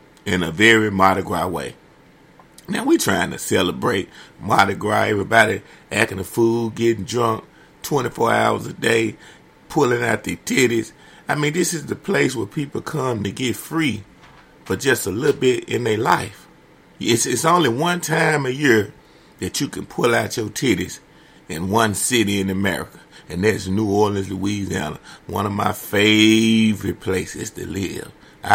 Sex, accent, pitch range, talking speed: male, American, 105-145 Hz, 165 wpm